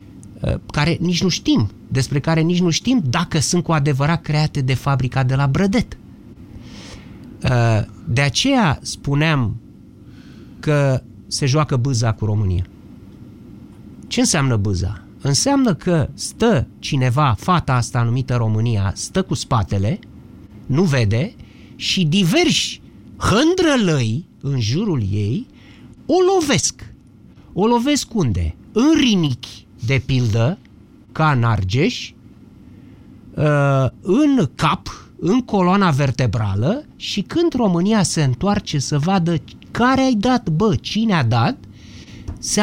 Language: Romanian